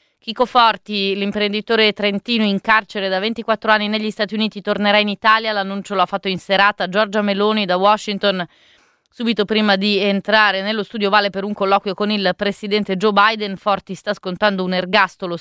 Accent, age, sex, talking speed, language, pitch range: native, 20-39, female, 175 wpm, Italian, 180-210 Hz